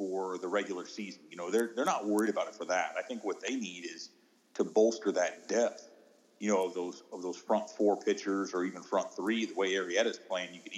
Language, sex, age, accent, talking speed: English, male, 40-59, American, 240 wpm